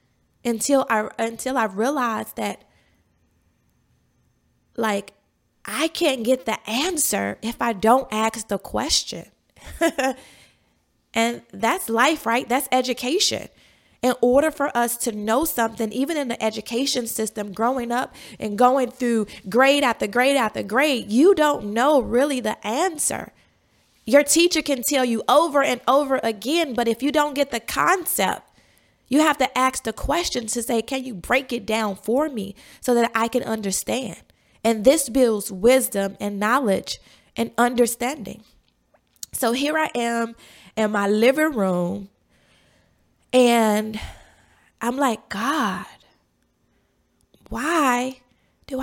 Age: 20-39